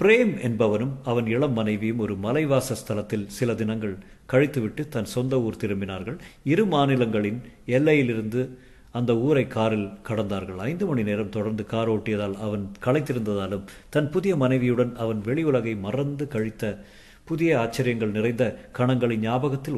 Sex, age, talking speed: male, 50-69, 130 wpm